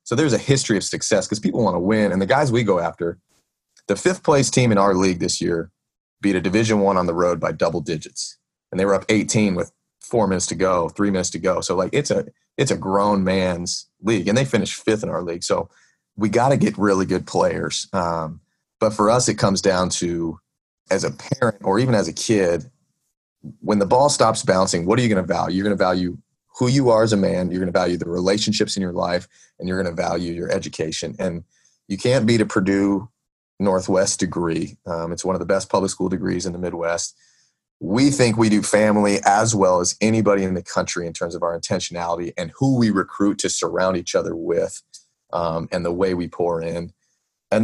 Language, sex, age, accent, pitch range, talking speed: English, male, 30-49, American, 85-105 Hz, 230 wpm